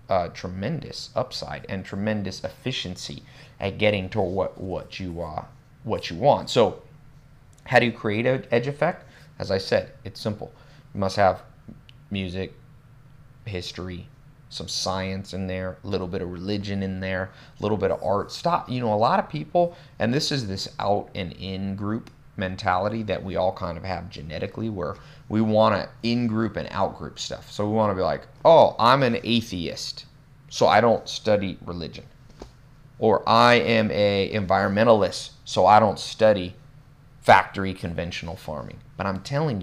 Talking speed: 170 wpm